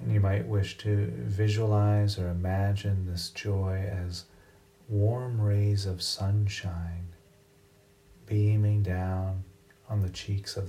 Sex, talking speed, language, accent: male, 120 wpm, English, American